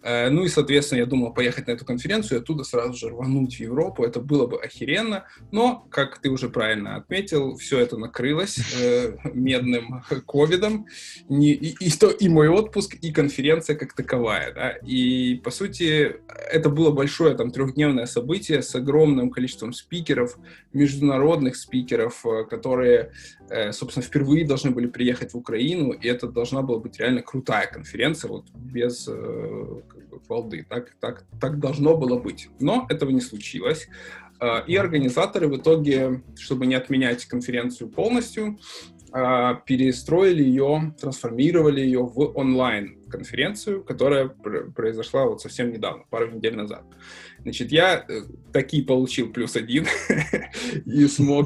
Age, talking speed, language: 20-39, 135 wpm, Russian